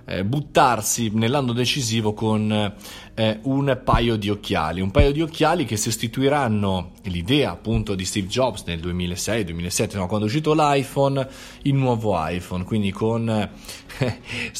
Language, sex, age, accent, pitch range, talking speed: Italian, male, 20-39, native, 100-120 Hz, 140 wpm